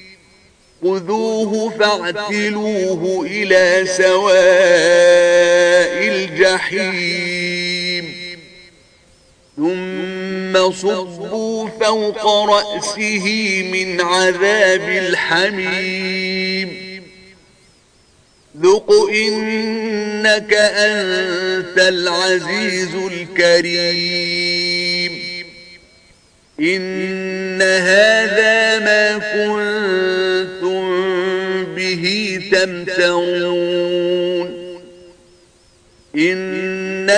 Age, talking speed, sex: 40-59, 35 wpm, male